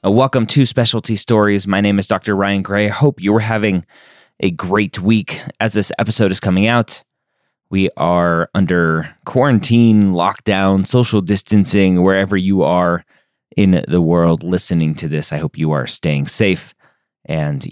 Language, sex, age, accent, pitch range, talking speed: English, male, 30-49, American, 85-110 Hz, 155 wpm